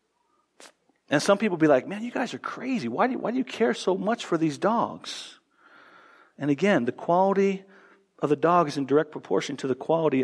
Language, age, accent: English, 50-69, American